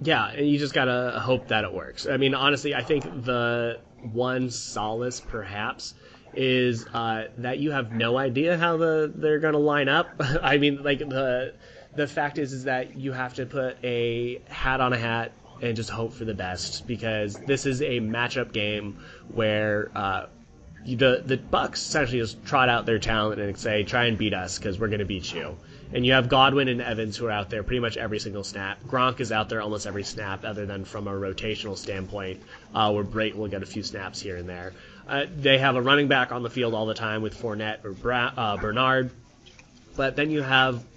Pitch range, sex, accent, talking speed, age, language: 105-130 Hz, male, American, 215 wpm, 20-39, English